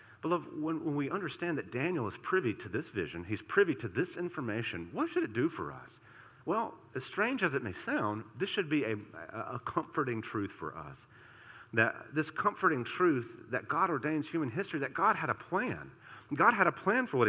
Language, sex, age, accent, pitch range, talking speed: English, male, 50-69, American, 155-220 Hz, 205 wpm